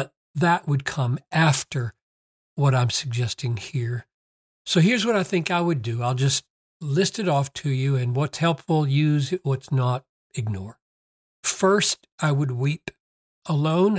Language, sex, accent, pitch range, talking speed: English, male, American, 125-165 Hz, 155 wpm